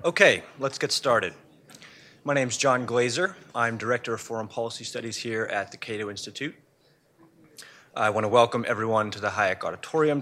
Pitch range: 115-140 Hz